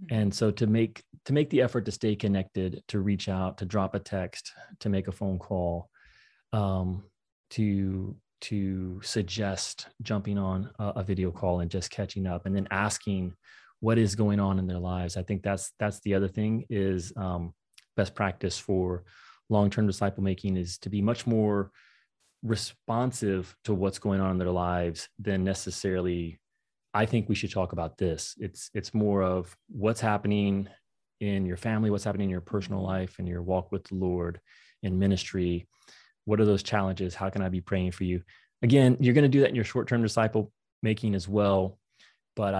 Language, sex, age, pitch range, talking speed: English, male, 30-49, 95-110 Hz, 185 wpm